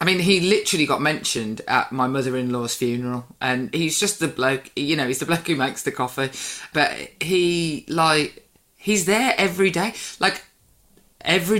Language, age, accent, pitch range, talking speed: English, 20-39, British, 135-185 Hz, 170 wpm